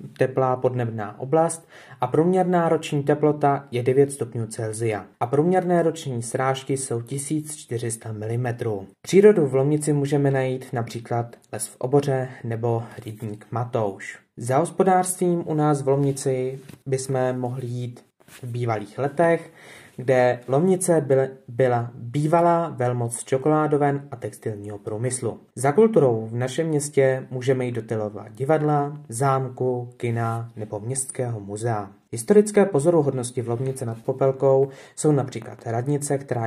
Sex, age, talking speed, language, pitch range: male, 20-39, 120 wpm, Czech, 120-145 Hz